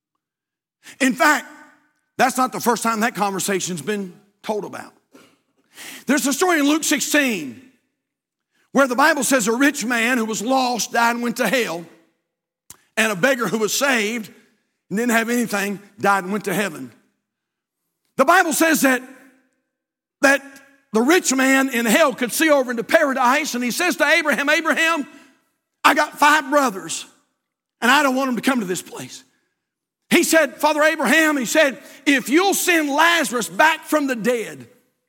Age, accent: 50-69, American